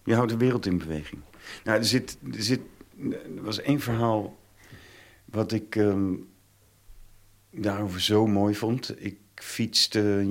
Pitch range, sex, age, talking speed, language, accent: 90-105 Hz, male, 50-69, 120 wpm, Dutch, Dutch